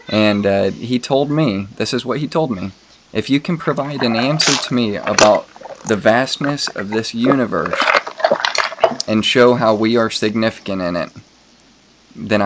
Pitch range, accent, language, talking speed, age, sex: 100-115 Hz, American, English, 165 wpm, 20-39, male